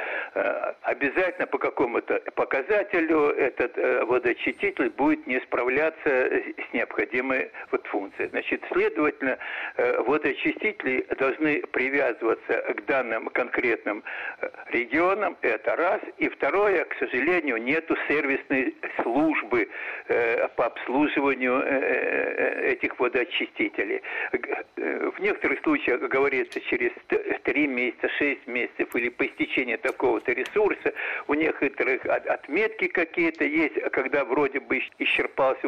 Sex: male